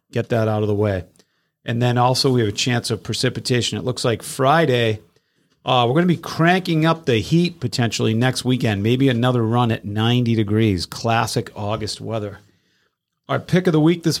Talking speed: 195 wpm